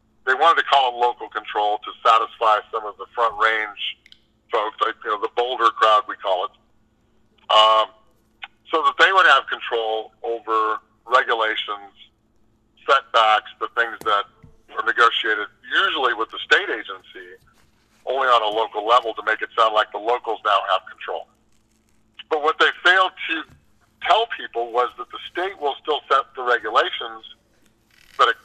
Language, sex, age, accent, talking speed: English, male, 50-69, American, 155 wpm